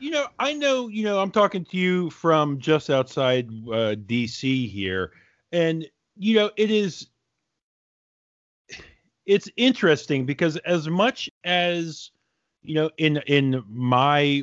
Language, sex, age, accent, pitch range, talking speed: English, male, 40-59, American, 100-165 Hz, 135 wpm